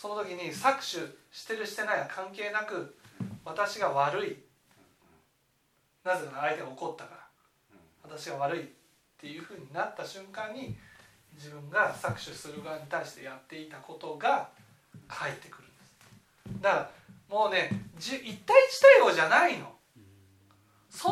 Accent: native